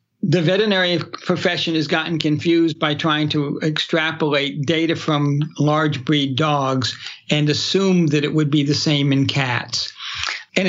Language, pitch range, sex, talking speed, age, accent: English, 150-175 Hz, male, 145 wpm, 60-79, American